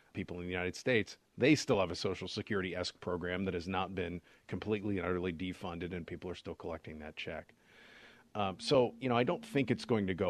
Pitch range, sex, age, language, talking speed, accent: 90-115 Hz, male, 40-59, English, 220 wpm, American